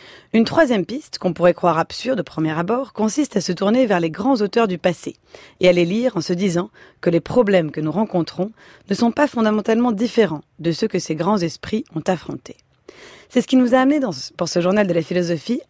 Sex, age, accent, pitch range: female, 30-49, French, 175-220 Hz